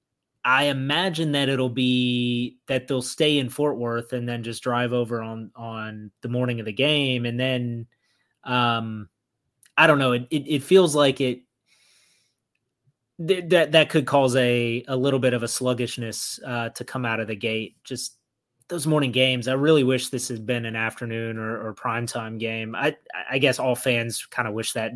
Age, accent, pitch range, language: 20-39, American, 115-135 Hz, English